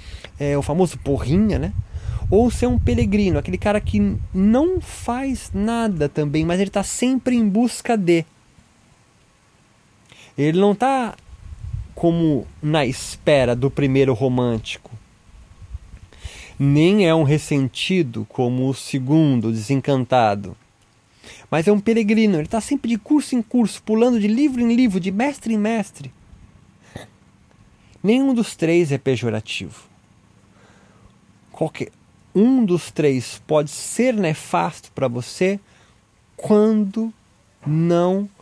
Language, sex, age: Portuguese, male, 20-39